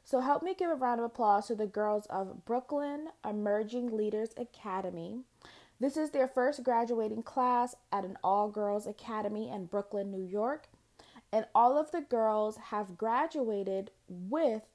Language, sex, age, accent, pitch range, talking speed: English, female, 20-39, American, 195-240 Hz, 155 wpm